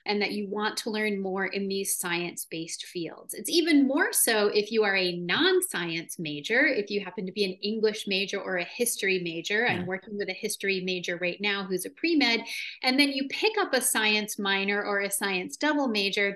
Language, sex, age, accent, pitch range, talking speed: English, female, 30-49, American, 190-240 Hz, 210 wpm